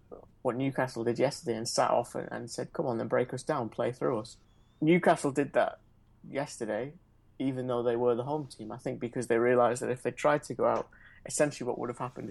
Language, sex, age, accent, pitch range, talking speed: English, male, 30-49, British, 115-135 Hz, 225 wpm